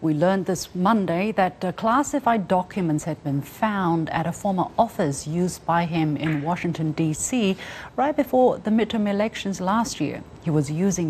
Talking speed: 160 wpm